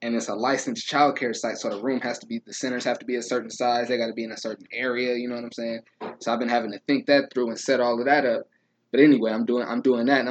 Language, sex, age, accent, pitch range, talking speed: English, male, 20-39, American, 115-130 Hz, 320 wpm